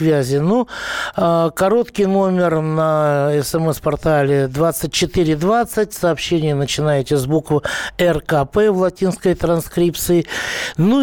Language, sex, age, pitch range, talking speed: Russian, male, 60-79, 150-190 Hz, 80 wpm